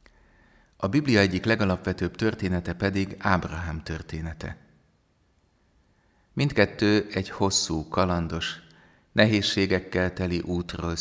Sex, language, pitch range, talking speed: male, Hungarian, 85-95 Hz, 80 wpm